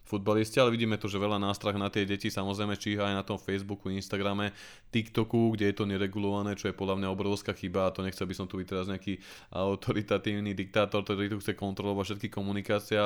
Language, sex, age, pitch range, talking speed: Slovak, male, 20-39, 105-120 Hz, 205 wpm